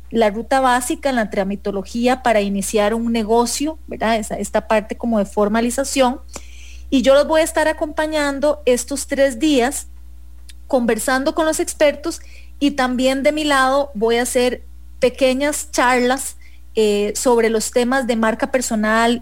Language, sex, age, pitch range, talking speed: English, female, 30-49, 210-255 Hz, 145 wpm